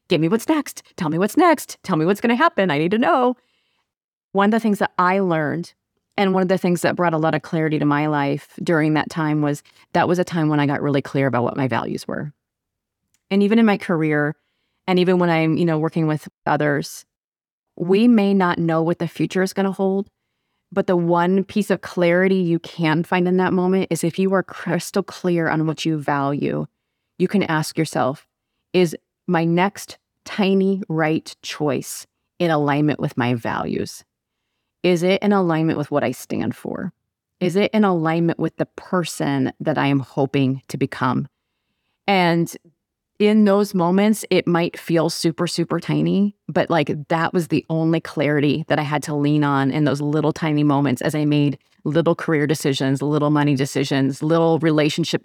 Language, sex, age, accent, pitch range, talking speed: English, female, 30-49, American, 145-185 Hz, 195 wpm